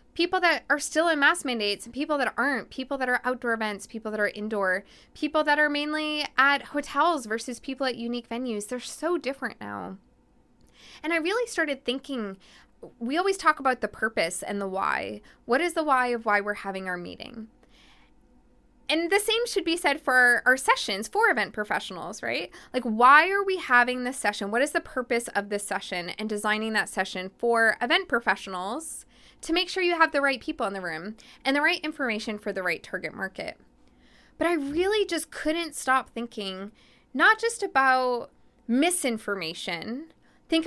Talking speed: 185 wpm